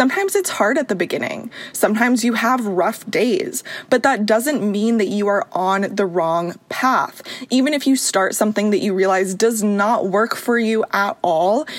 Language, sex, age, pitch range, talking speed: English, female, 20-39, 190-240 Hz, 190 wpm